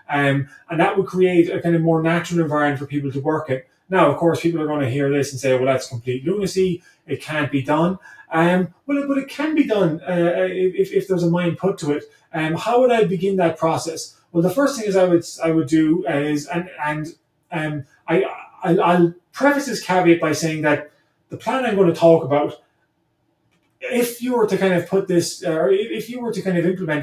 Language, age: English, 20-39